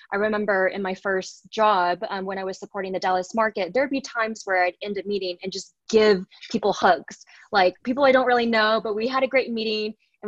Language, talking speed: English, 235 wpm